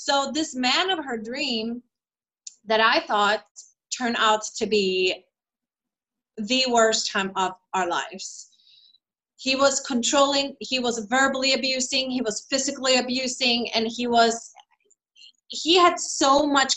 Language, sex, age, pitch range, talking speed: English, female, 30-49, 220-280 Hz, 130 wpm